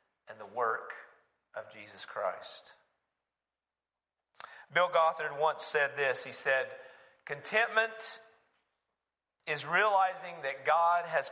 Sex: male